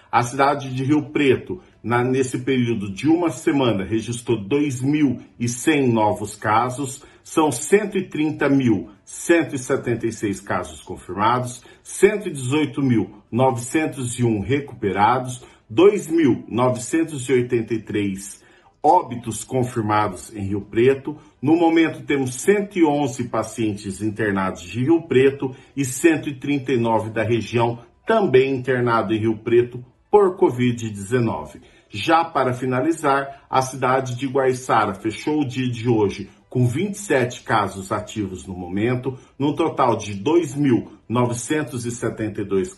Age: 50-69